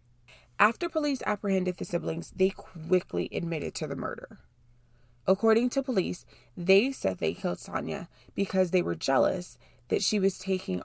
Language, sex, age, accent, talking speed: English, female, 20-39, American, 150 wpm